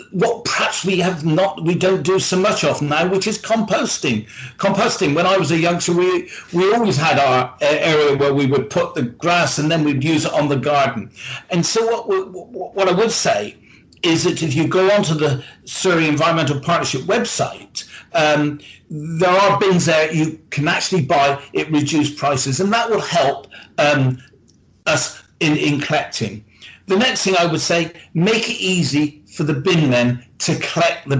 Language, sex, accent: English, male, British